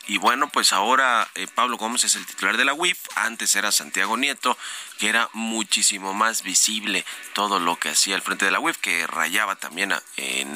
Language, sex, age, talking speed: Spanish, male, 30-49, 205 wpm